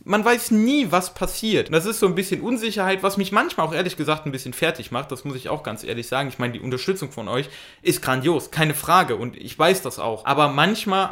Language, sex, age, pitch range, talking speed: German, male, 20-39, 140-185 Hz, 245 wpm